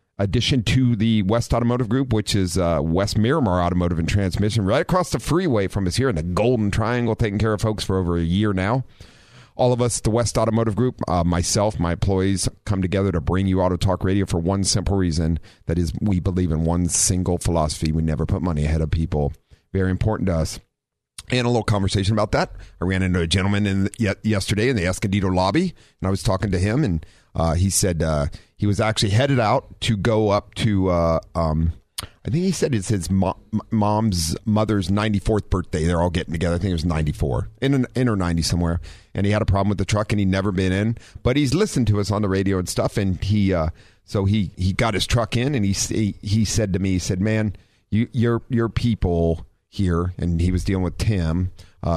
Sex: male